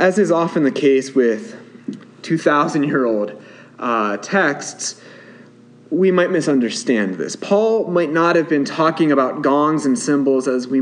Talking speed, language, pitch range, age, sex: 135 wpm, English, 130-170 Hz, 30-49, male